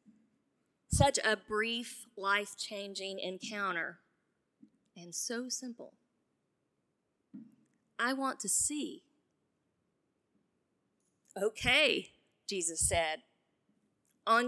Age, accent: 30-49, American